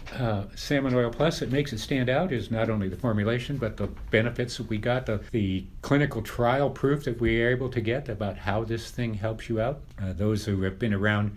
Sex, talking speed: male, 230 wpm